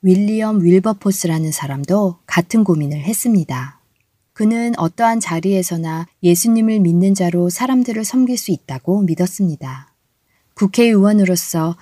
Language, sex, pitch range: Korean, female, 155-210 Hz